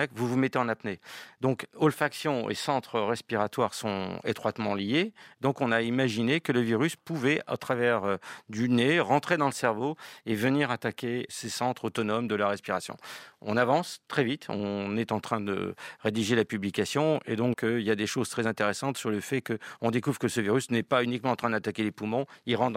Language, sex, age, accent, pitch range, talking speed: French, male, 40-59, French, 110-135 Hz, 205 wpm